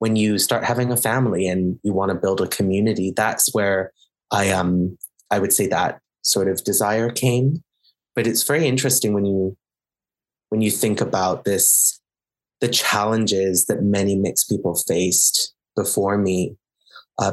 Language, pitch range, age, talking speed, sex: English, 100-125 Hz, 20-39, 160 wpm, male